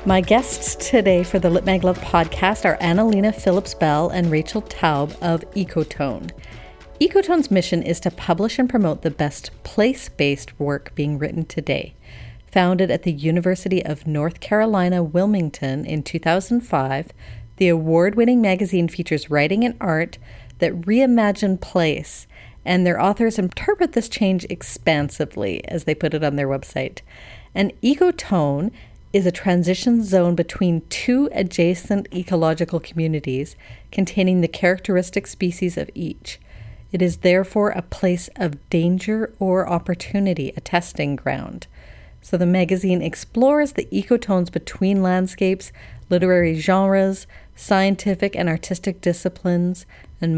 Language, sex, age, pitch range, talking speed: English, female, 40-59, 165-195 Hz, 130 wpm